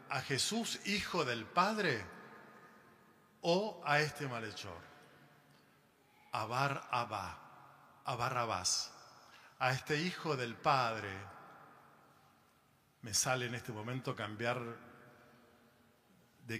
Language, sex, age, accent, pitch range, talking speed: Spanish, male, 40-59, Argentinian, 120-150 Hz, 90 wpm